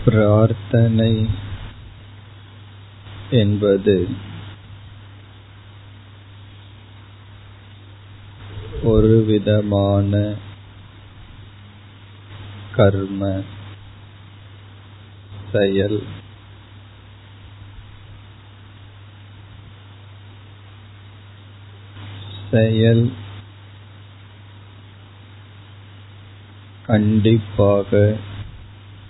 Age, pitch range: 50-69, 100-105 Hz